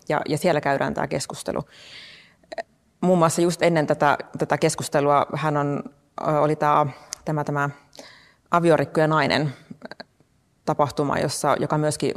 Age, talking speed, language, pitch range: 30-49, 130 wpm, Finnish, 145-155 Hz